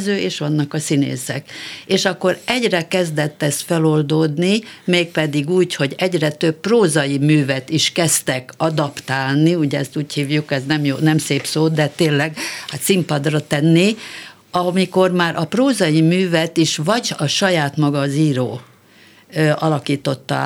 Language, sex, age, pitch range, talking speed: Hungarian, female, 60-79, 145-180 Hz, 135 wpm